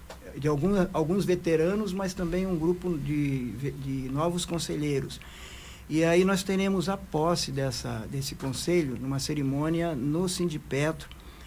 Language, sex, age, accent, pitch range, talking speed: Portuguese, male, 60-79, Brazilian, 135-170 Hz, 130 wpm